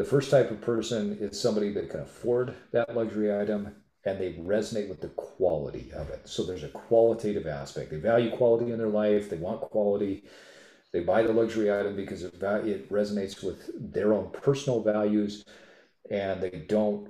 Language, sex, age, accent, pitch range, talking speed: English, male, 40-59, American, 100-115 Hz, 180 wpm